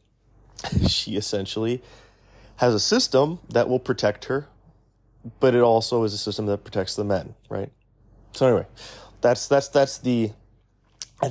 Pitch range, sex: 105-120 Hz, male